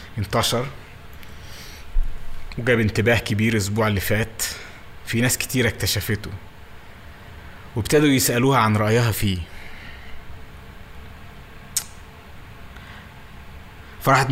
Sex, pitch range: male, 100-130 Hz